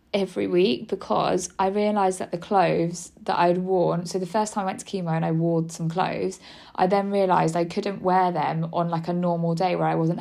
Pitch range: 160-180 Hz